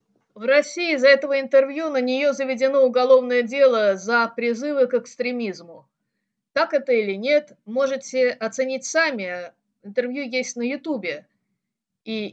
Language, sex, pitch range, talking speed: Russian, female, 210-275 Hz, 125 wpm